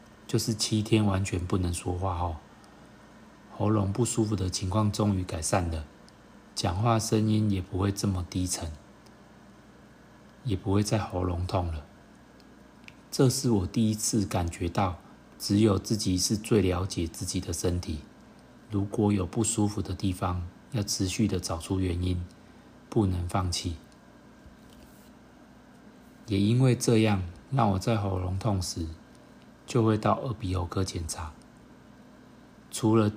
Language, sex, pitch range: Chinese, male, 90-110 Hz